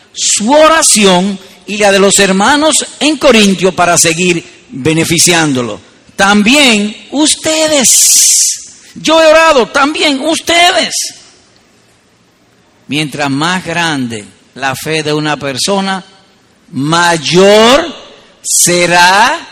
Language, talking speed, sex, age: Spanish, 90 wpm, male, 50-69